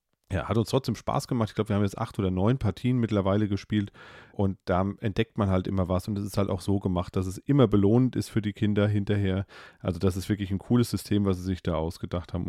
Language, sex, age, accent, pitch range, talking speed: German, male, 30-49, German, 95-115 Hz, 255 wpm